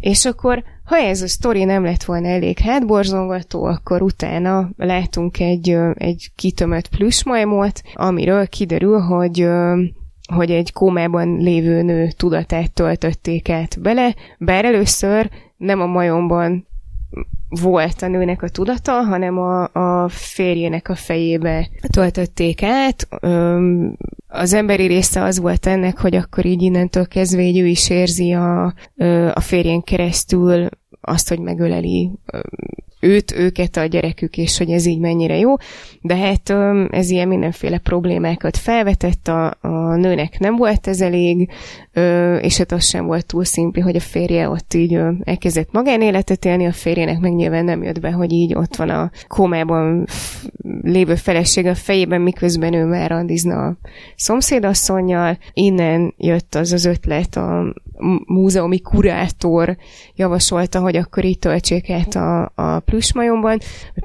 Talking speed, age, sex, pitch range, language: 140 wpm, 20-39, female, 170-190 Hz, Hungarian